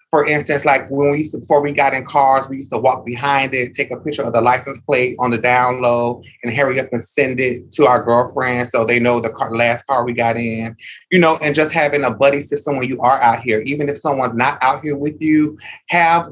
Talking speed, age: 255 wpm, 30-49